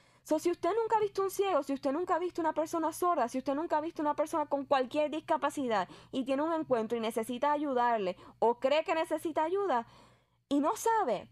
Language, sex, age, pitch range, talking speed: Spanish, female, 10-29, 220-315 Hz, 215 wpm